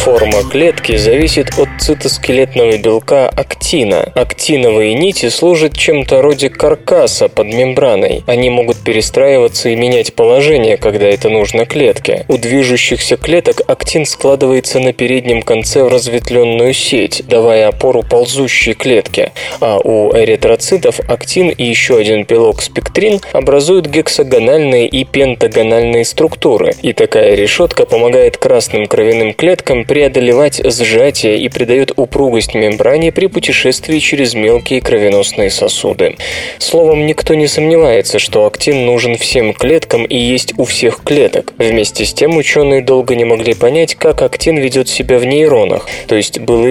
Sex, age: male, 20-39